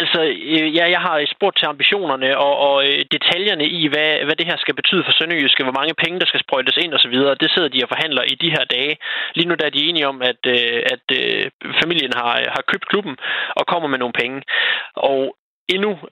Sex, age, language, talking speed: male, 20-39, Danish, 220 wpm